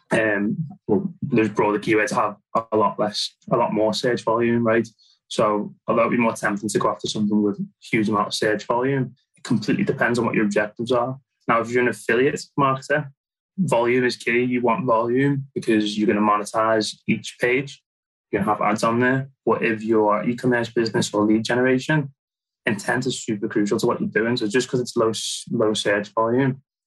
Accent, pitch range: British, 110-125 Hz